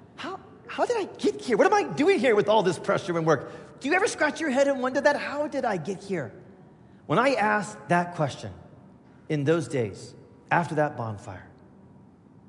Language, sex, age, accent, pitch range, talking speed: English, male, 40-59, American, 145-225 Hz, 195 wpm